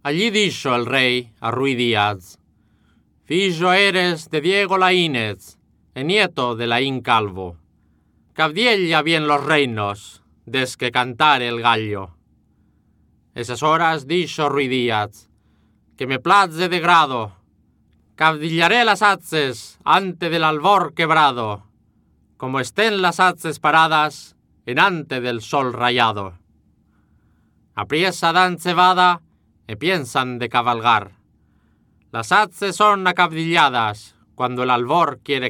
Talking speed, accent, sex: 115 wpm, Spanish, male